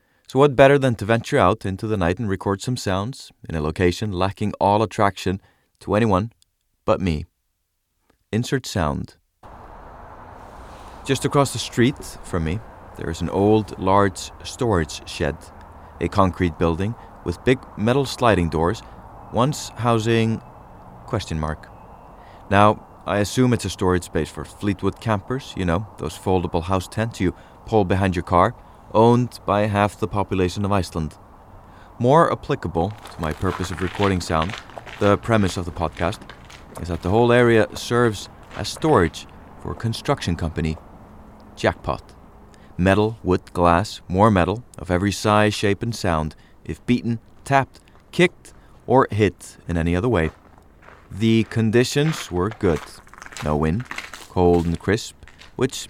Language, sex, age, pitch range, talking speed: English, male, 30-49, 85-110 Hz, 145 wpm